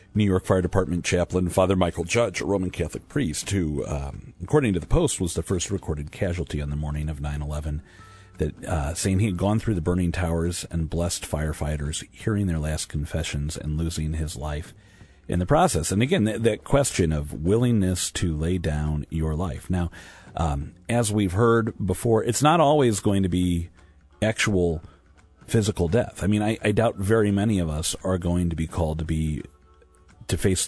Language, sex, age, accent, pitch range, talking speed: English, male, 40-59, American, 80-100 Hz, 185 wpm